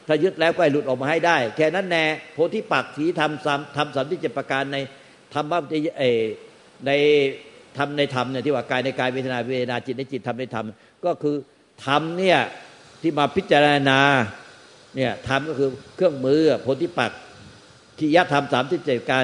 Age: 60-79